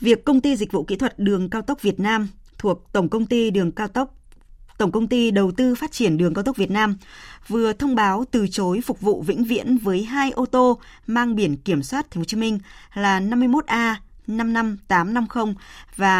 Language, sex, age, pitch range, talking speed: Vietnamese, female, 20-39, 180-240 Hz, 210 wpm